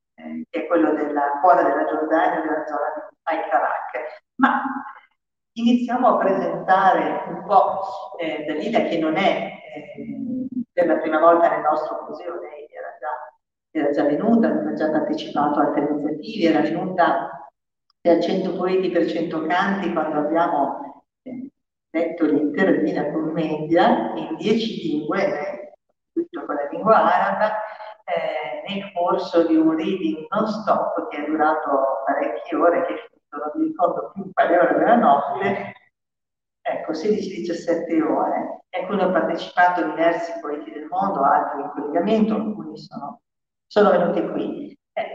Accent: native